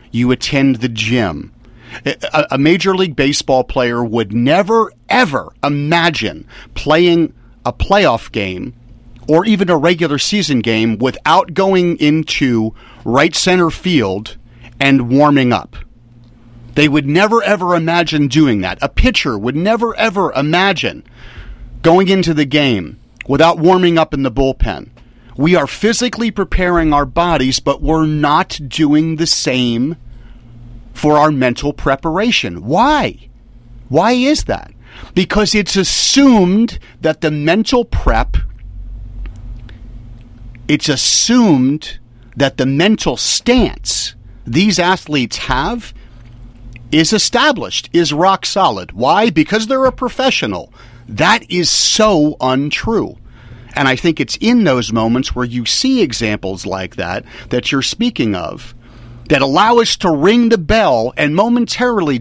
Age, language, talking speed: 40-59, English, 125 wpm